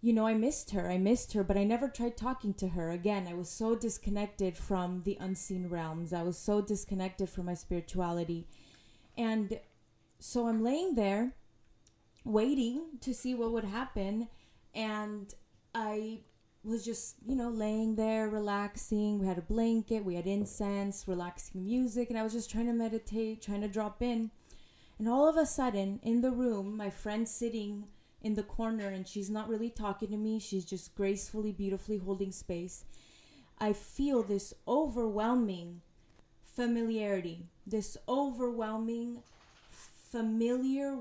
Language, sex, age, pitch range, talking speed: English, female, 20-39, 195-230 Hz, 155 wpm